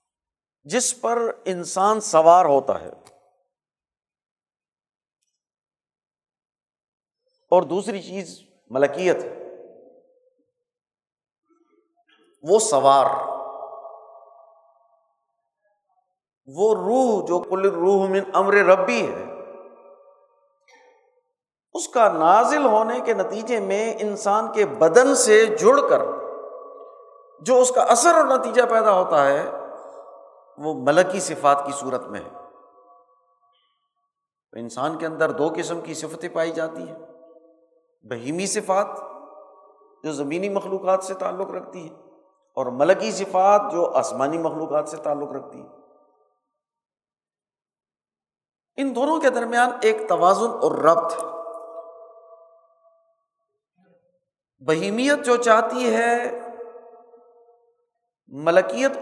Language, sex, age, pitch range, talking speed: Urdu, male, 50-69, 165-235 Hz, 95 wpm